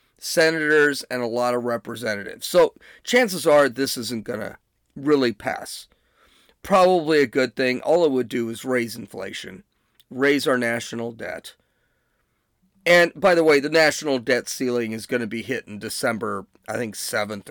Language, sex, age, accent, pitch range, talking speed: English, male, 40-59, American, 115-180 Hz, 165 wpm